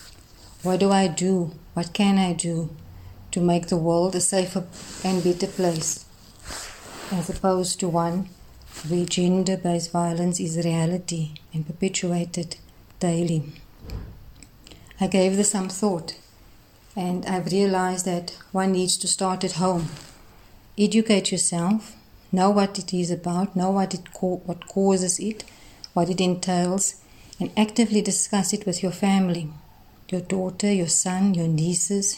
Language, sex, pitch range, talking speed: English, female, 165-190 Hz, 140 wpm